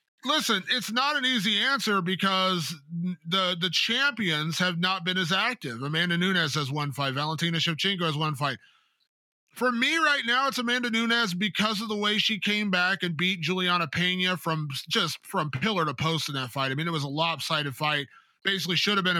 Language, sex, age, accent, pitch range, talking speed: English, male, 30-49, American, 160-200 Hz, 195 wpm